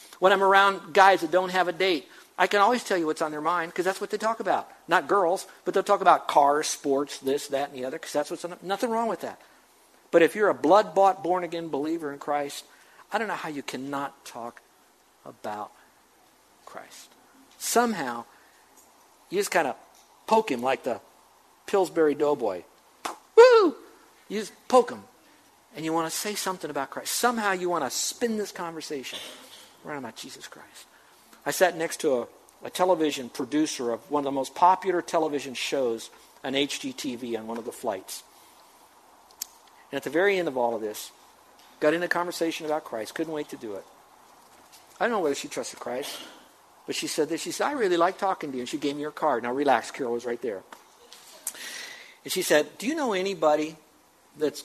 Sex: male